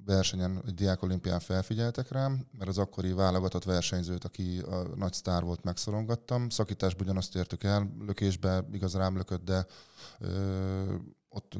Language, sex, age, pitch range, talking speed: Hungarian, male, 20-39, 90-100 Hz, 130 wpm